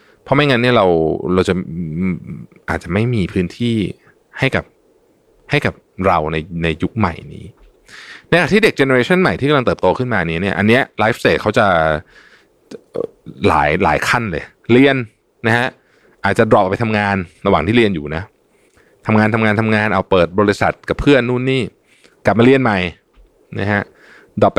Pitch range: 90-130 Hz